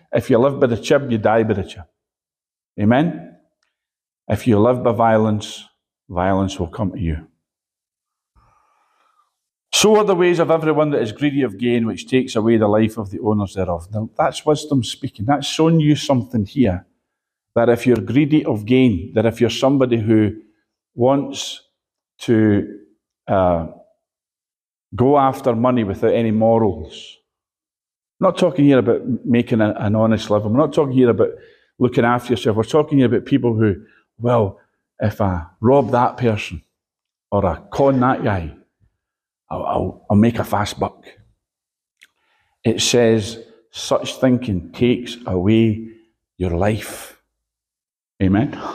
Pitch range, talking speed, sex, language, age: 105-135 Hz, 150 wpm, male, English, 40-59